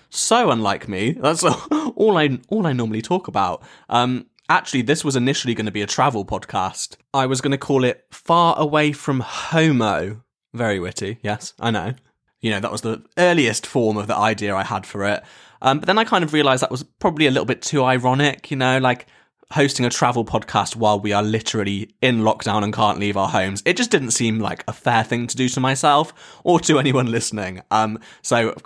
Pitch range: 110-135 Hz